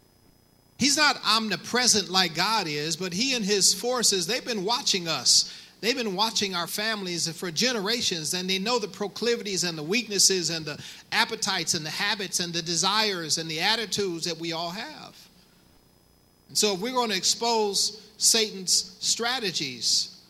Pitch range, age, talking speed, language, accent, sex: 170-220 Hz, 40-59, 165 wpm, English, American, male